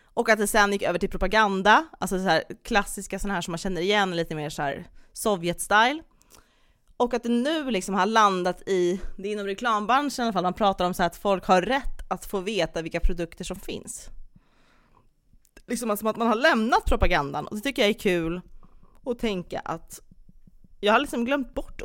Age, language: 20-39, Swedish